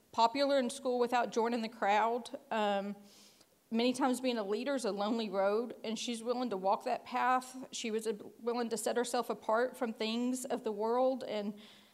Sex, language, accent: female, English, American